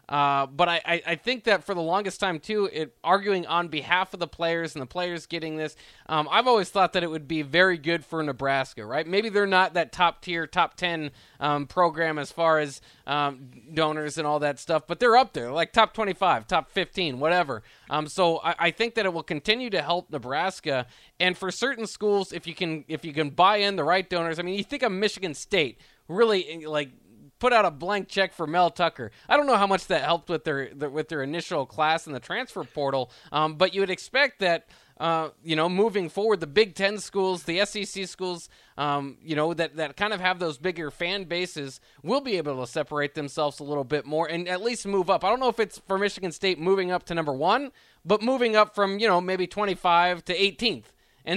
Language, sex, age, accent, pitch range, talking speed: English, male, 20-39, American, 155-195 Hz, 230 wpm